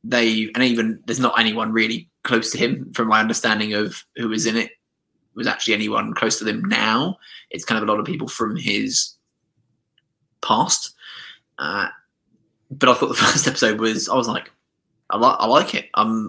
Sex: male